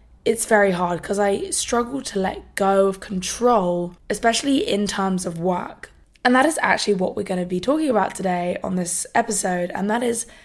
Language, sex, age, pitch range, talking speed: English, female, 20-39, 180-220 Hz, 190 wpm